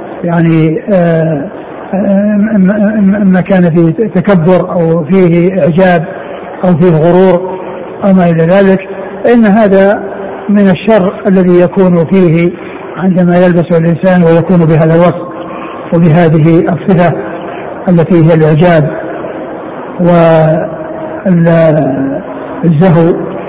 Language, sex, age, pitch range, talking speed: Arabic, male, 60-79, 170-195 Hz, 90 wpm